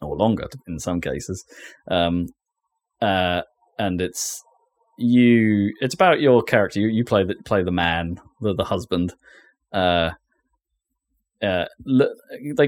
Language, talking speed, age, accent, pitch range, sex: English, 135 wpm, 20-39, British, 100-120 Hz, male